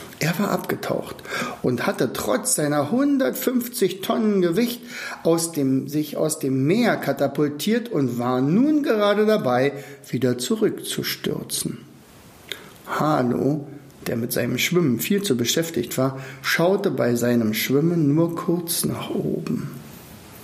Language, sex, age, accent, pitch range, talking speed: German, male, 60-79, German, 130-175 Hz, 115 wpm